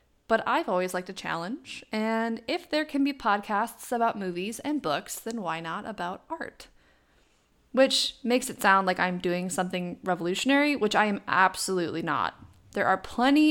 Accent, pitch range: American, 185-240 Hz